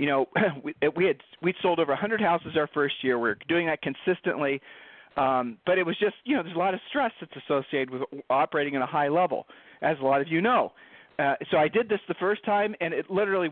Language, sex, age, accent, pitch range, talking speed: English, male, 40-59, American, 150-210 Hz, 245 wpm